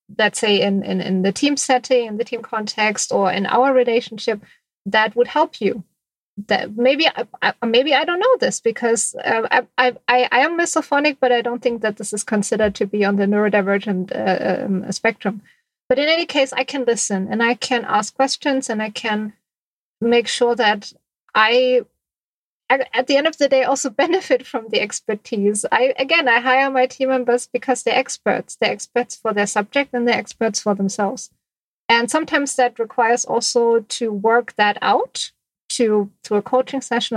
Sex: female